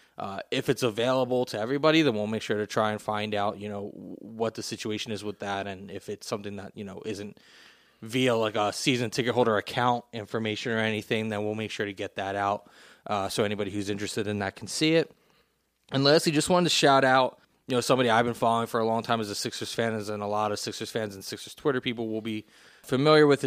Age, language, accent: 20-39, English, American